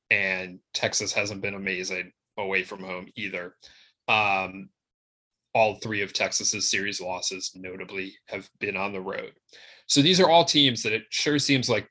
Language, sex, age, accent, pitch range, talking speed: English, male, 20-39, American, 95-130 Hz, 160 wpm